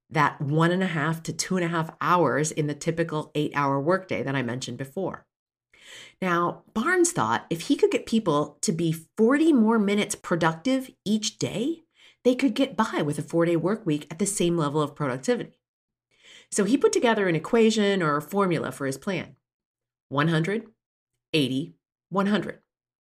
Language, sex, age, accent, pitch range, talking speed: English, female, 40-59, American, 145-205 Hz, 175 wpm